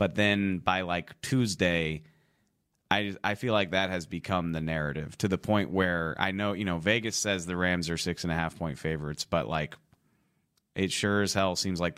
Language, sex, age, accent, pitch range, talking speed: English, male, 30-49, American, 80-95 Hz, 205 wpm